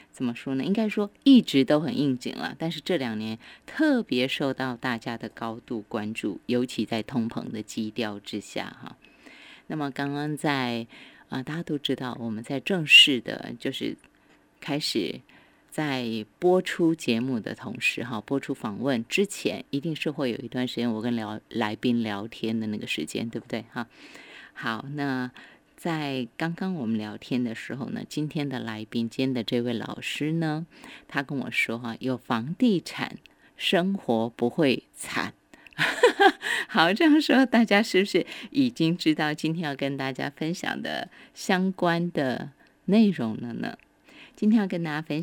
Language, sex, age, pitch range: Chinese, female, 20-39, 120-175 Hz